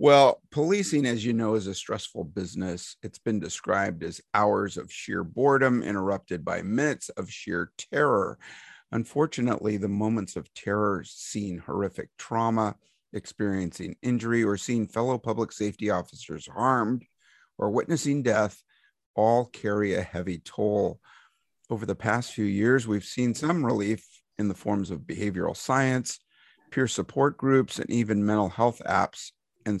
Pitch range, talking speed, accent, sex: 100-120 Hz, 145 wpm, American, male